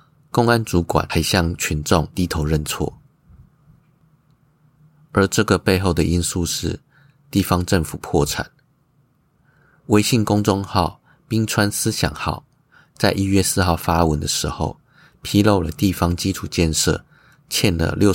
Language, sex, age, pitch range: Chinese, male, 30-49, 85-140 Hz